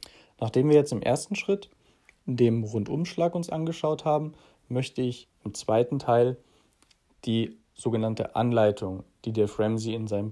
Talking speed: 140 wpm